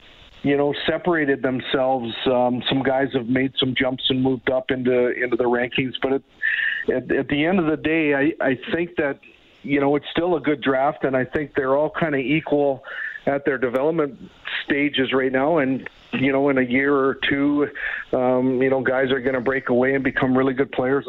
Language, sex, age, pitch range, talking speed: English, male, 50-69, 125-140 Hz, 210 wpm